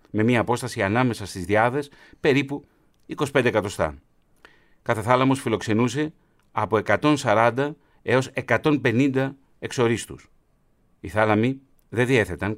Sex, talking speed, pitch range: male, 100 wpm, 105-140 Hz